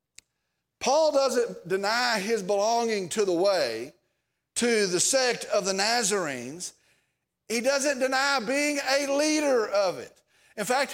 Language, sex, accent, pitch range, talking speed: English, male, American, 220-285 Hz, 130 wpm